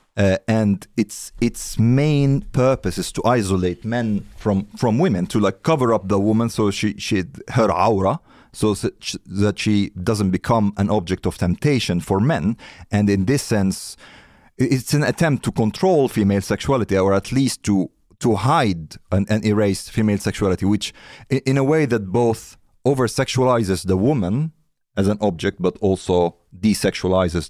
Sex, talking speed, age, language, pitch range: male, 160 wpm, 40-59, Swedish, 90-125 Hz